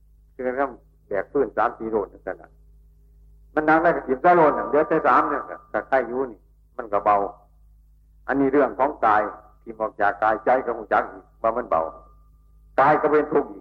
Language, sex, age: Chinese, male, 60-79